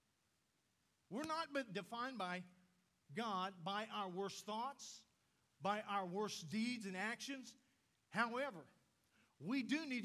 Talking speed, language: 115 wpm, English